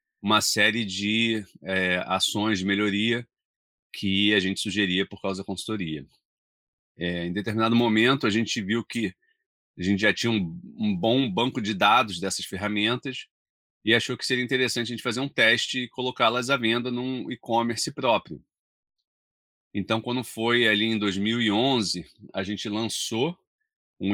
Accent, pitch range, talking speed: Brazilian, 95-120 Hz, 155 wpm